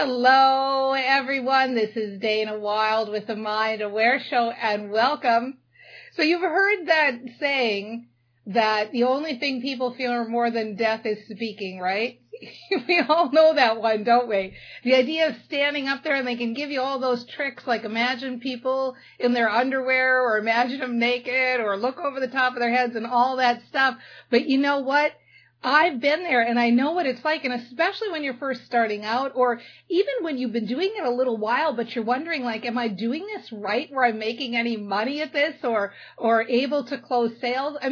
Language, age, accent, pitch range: English, 50-69, American, 230-275 Hz